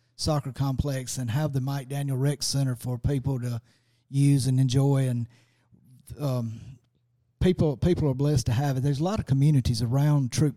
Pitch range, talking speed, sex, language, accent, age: 130-145 Hz, 175 wpm, male, English, American, 40-59